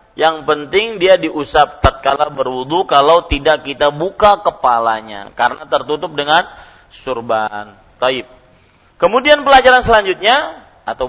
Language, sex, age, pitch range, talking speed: Malay, male, 40-59, 140-210 Hz, 115 wpm